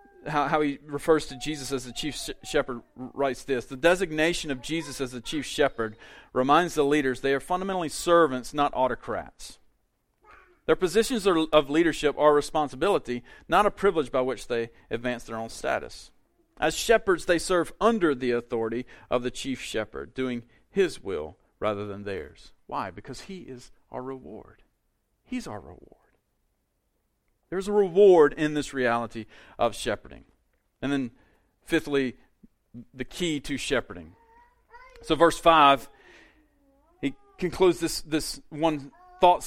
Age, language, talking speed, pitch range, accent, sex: 40-59, English, 145 wpm, 130-180 Hz, American, male